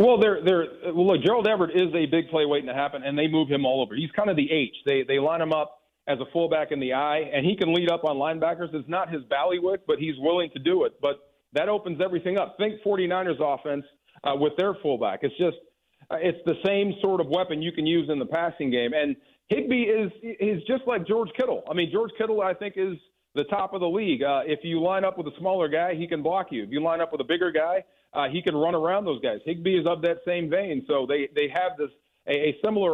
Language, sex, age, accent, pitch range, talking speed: English, male, 40-59, American, 150-190 Hz, 260 wpm